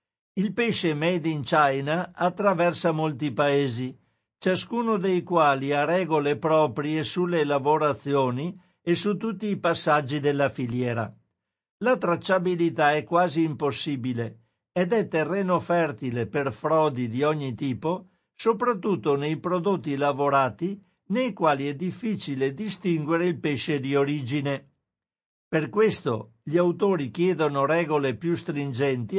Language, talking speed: Italian, 120 wpm